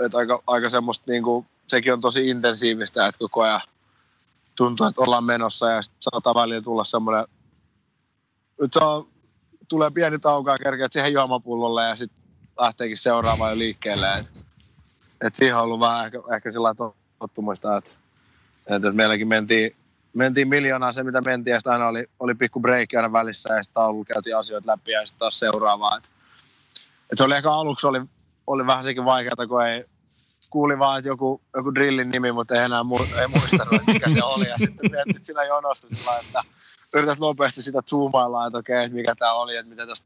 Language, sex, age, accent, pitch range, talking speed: Finnish, male, 20-39, native, 110-130 Hz, 185 wpm